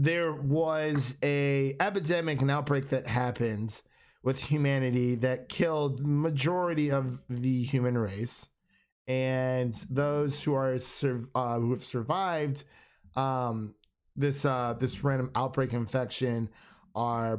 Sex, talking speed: male, 115 wpm